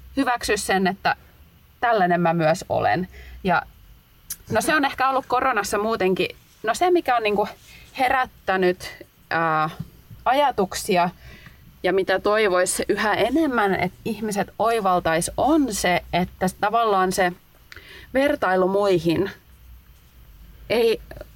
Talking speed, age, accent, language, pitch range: 110 wpm, 20-39, native, Finnish, 175-200 Hz